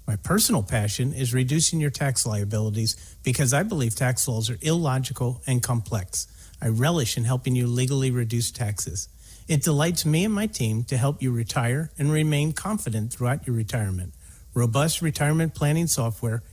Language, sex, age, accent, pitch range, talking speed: English, male, 50-69, American, 115-155 Hz, 165 wpm